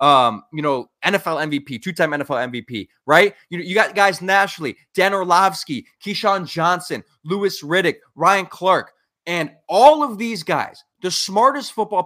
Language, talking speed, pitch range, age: English, 150 wpm, 160-220 Hz, 20-39